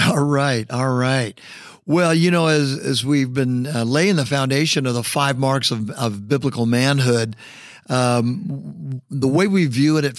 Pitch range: 120-150 Hz